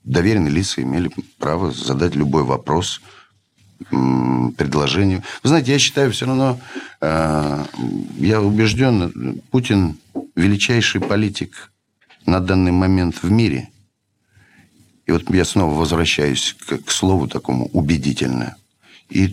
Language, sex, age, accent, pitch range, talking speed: Russian, male, 50-69, native, 75-100 Hz, 110 wpm